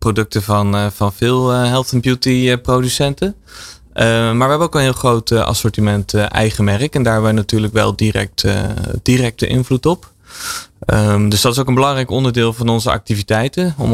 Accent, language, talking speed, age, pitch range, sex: Dutch, Dutch, 175 wpm, 20-39, 105-120 Hz, male